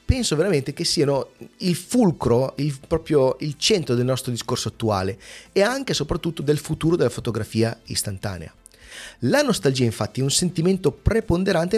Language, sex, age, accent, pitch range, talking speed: Italian, male, 30-49, native, 120-160 Hz, 155 wpm